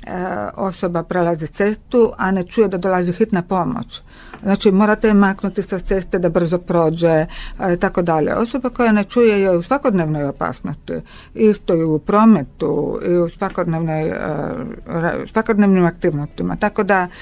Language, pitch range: Croatian, 170-205 Hz